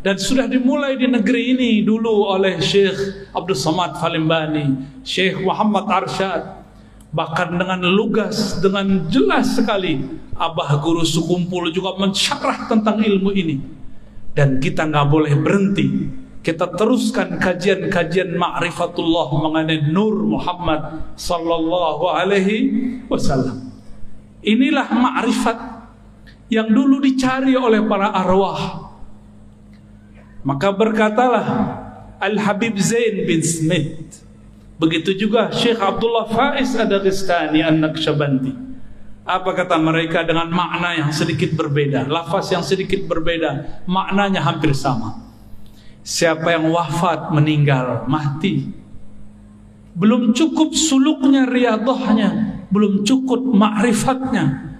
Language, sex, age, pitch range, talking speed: Indonesian, male, 50-69, 160-220 Hz, 100 wpm